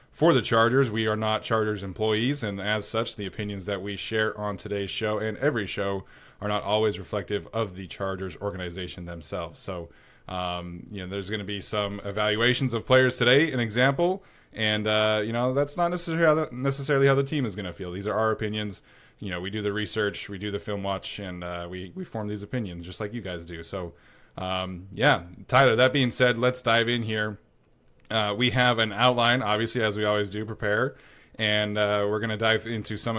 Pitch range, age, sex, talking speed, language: 105-125 Hz, 20-39, male, 215 wpm, English